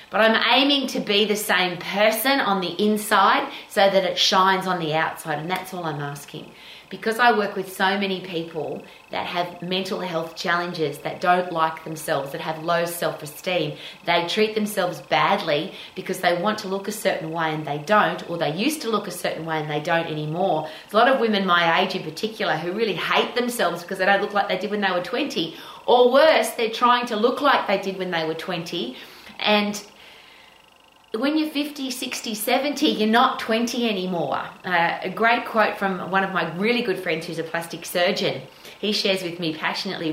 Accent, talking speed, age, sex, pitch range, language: Australian, 205 wpm, 30-49, female, 165-210 Hz, English